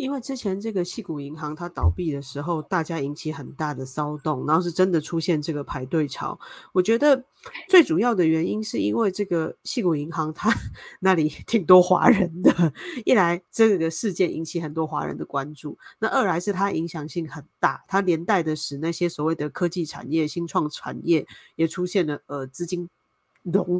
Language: Chinese